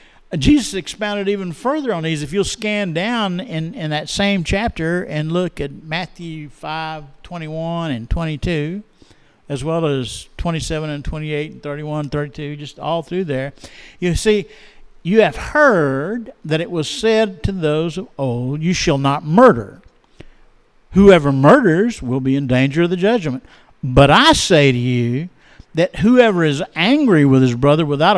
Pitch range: 140-185 Hz